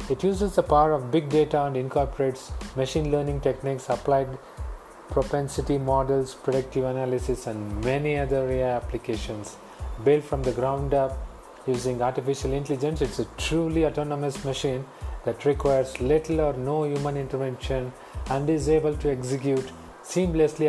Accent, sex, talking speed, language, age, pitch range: Indian, male, 140 wpm, English, 30-49, 130-155 Hz